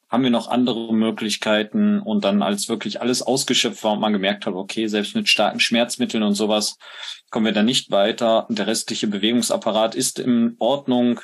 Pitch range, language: 105-125 Hz, German